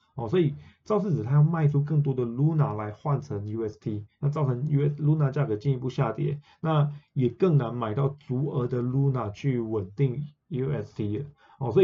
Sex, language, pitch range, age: male, Chinese, 120-155 Hz, 20-39